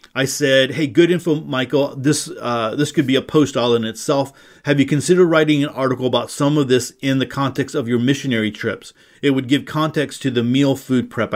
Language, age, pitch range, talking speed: English, 40-59, 120-145 Hz, 220 wpm